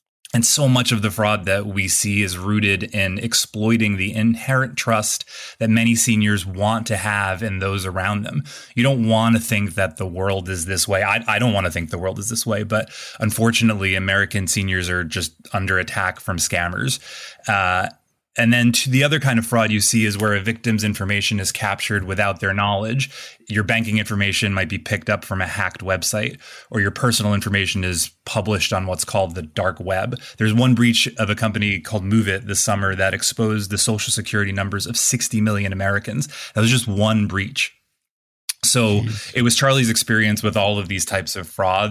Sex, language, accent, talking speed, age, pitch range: male, English, American, 200 wpm, 20-39, 95-115 Hz